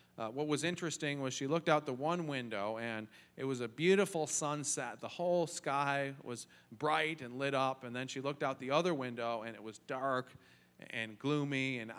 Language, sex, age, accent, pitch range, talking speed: English, male, 40-59, American, 115-150 Hz, 200 wpm